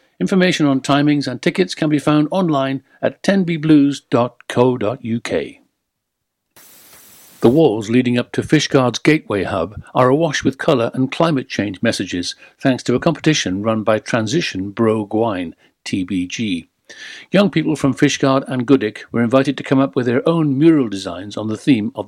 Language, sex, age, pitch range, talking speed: English, male, 60-79, 110-140 Hz, 150 wpm